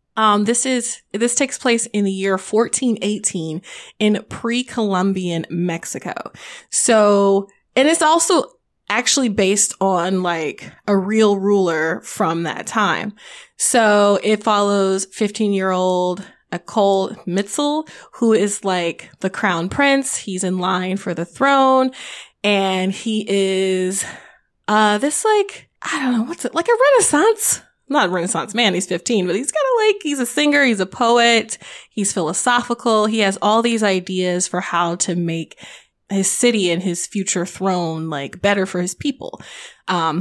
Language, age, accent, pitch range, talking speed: English, 20-39, American, 185-235 Hz, 150 wpm